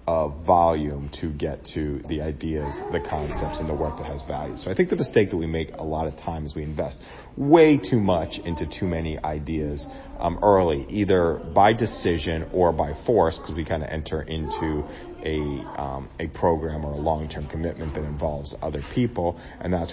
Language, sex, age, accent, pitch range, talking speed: English, male, 40-59, American, 75-85 Hz, 195 wpm